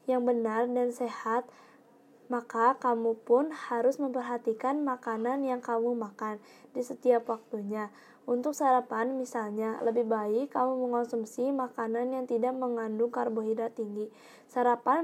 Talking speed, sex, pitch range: 120 wpm, female, 230-255 Hz